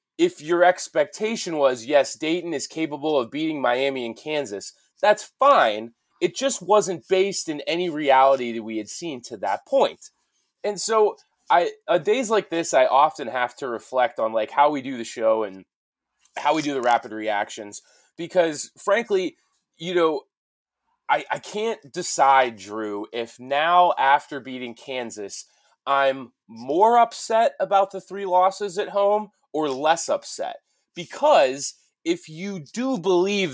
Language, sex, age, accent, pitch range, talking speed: English, male, 20-39, American, 135-205 Hz, 155 wpm